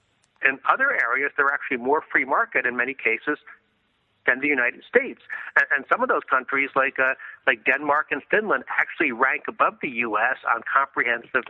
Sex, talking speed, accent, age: male, 170 wpm, American, 60-79